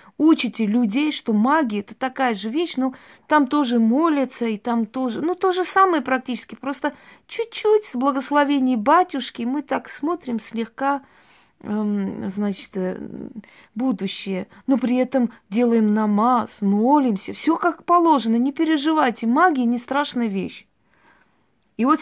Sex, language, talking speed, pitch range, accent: female, Russian, 135 wpm, 200-260 Hz, native